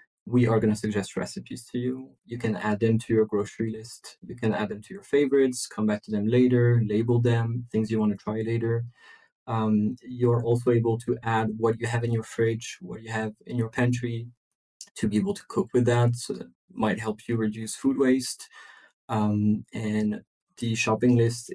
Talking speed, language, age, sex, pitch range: 210 wpm, English, 20-39, male, 110-120 Hz